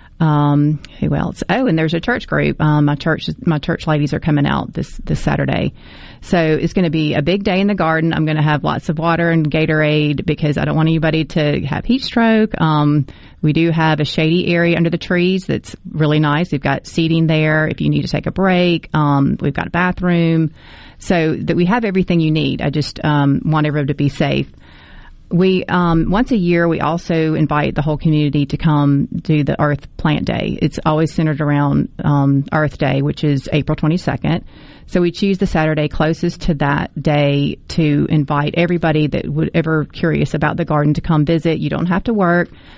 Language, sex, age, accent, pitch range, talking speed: English, female, 30-49, American, 150-170 Hz, 210 wpm